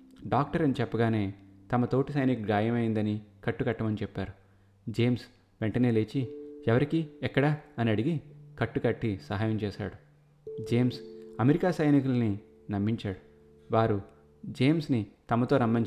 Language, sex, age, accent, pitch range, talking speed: Telugu, male, 20-39, native, 105-130 Hz, 100 wpm